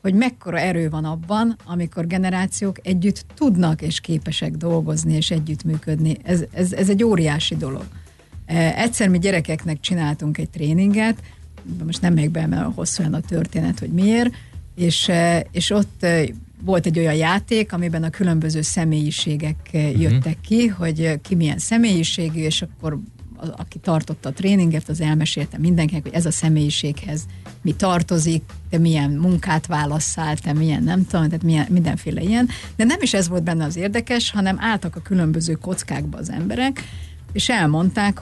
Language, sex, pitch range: Hungarian, female, 155-190 Hz